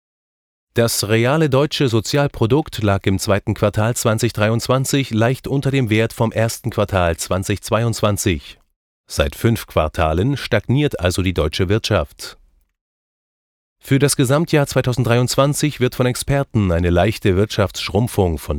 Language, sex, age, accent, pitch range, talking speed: German, male, 30-49, German, 90-125 Hz, 115 wpm